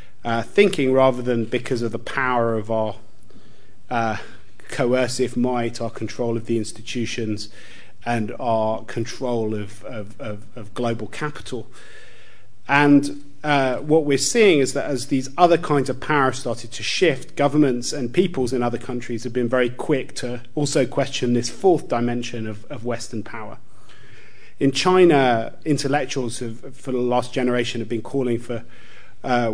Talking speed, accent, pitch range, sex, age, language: 155 wpm, British, 110-130 Hz, male, 30-49, English